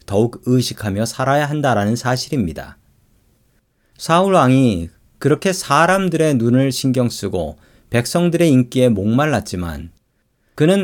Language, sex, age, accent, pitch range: Korean, male, 40-59, native, 105-145 Hz